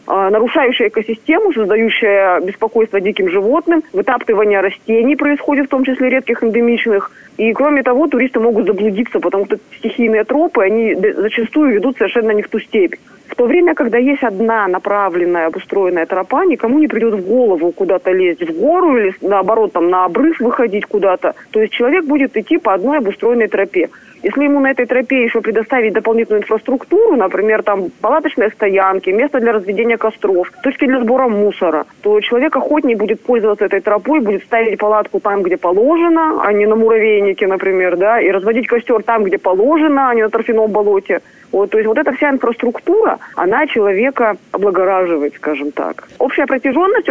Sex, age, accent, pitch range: female, 20-39, native, 205-270 Hz